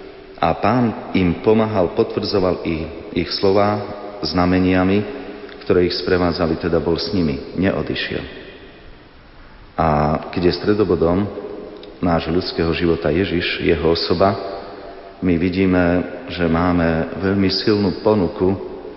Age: 40-59